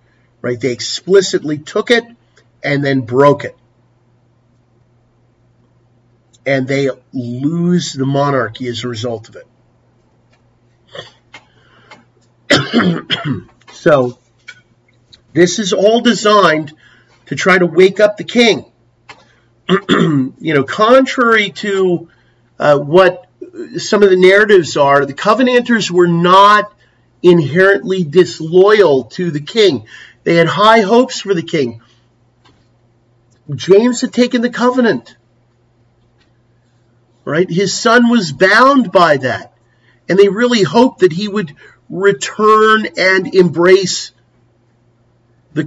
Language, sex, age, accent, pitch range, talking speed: English, male, 40-59, American, 120-185 Hz, 105 wpm